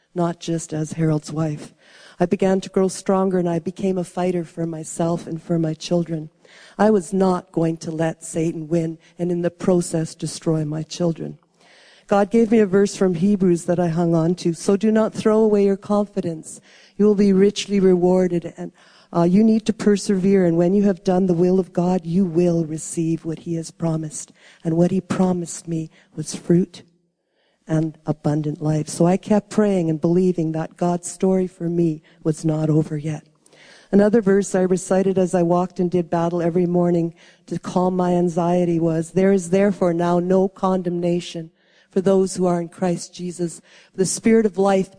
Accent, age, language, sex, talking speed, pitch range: American, 50-69, English, female, 190 wpm, 170-195 Hz